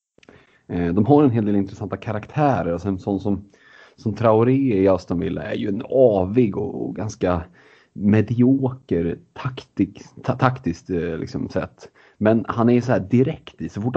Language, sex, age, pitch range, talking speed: Swedish, male, 30-49, 95-125 Hz, 165 wpm